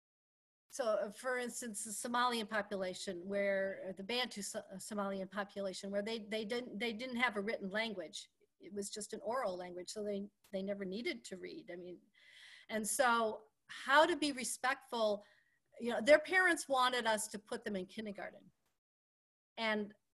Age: 50-69